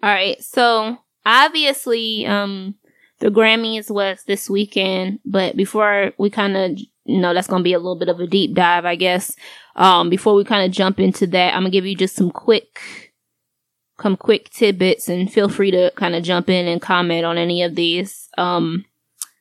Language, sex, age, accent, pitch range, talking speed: English, female, 20-39, American, 180-205 Hz, 190 wpm